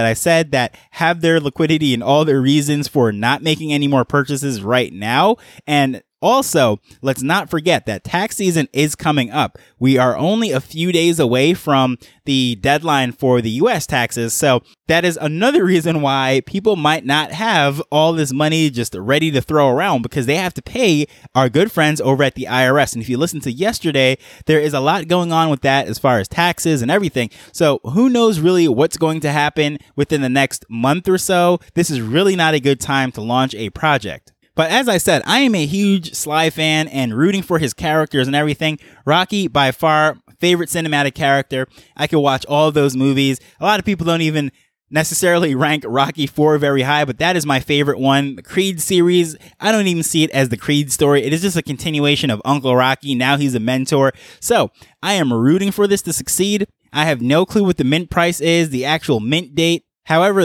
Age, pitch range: 20-39, 135-170 Hz